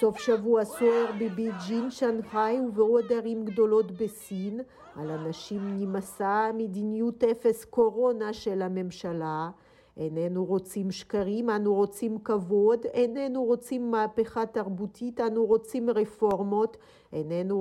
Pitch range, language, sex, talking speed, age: 190-230 Hz, Hebrew, female, 110 wpm, 50-69